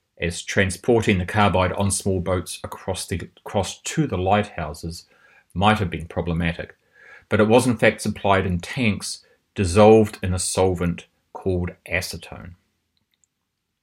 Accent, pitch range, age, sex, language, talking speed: Australian, 85-105 Hz, 30-49, male, English, 130 wpm